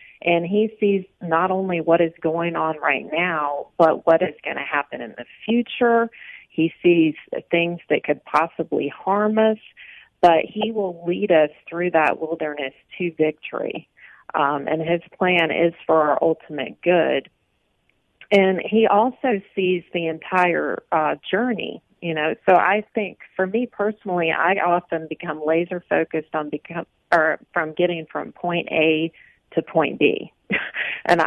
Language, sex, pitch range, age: English, female, 160-195 Hz, 40-59